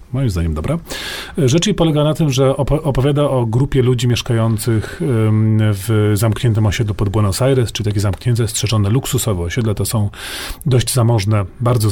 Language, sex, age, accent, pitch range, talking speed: Polish, male, 40-59, native, 110-130 Hz, 155 wpm